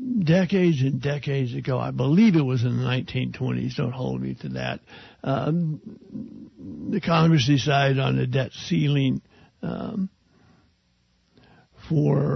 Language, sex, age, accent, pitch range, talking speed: English, male, 60-79, American, 125-160 Hz, 125 wpm